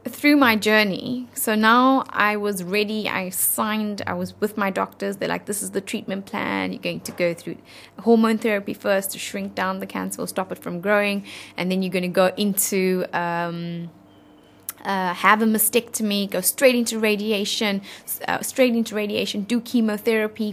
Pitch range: 175-215 Hz